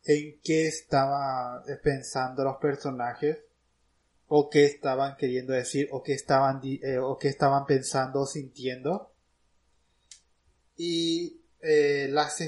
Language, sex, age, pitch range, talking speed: Spanish, male, 20-39, 130-160 Hz, 120 wpm